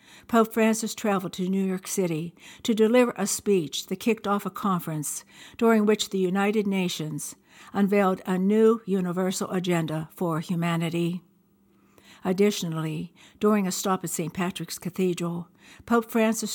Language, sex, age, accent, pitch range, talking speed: English, female, 60-79, American, 170-195 Hz, 140 wpm